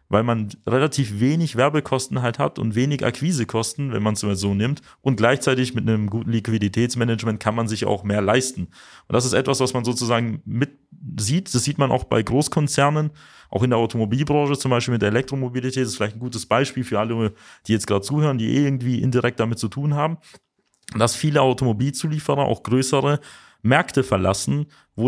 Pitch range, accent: 110-135 Hz, German